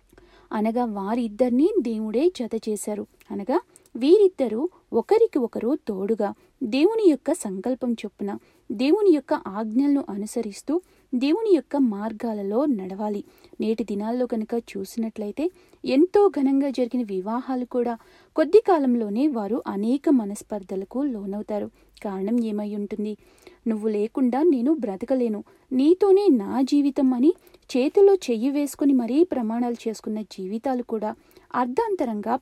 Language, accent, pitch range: Telugu, native, 215-310 Hz